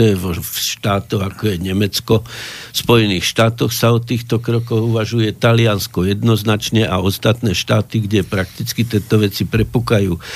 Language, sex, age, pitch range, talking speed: Slovak, male, 60-79, 105-120 Hz, 135 wpm